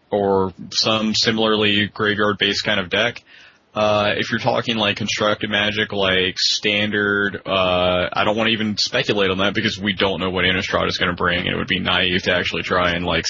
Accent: American